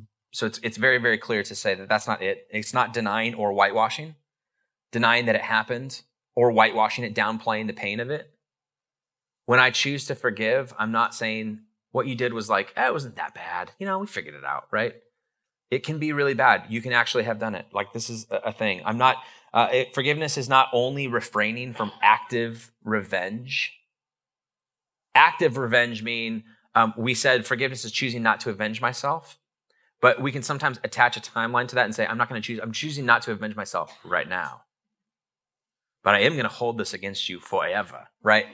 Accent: American